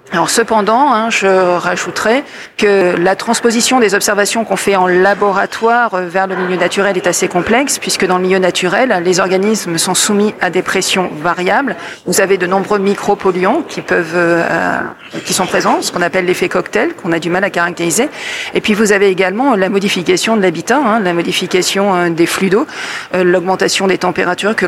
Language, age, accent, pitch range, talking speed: French, 40-59, French, 185-230 Hz, 185 wpm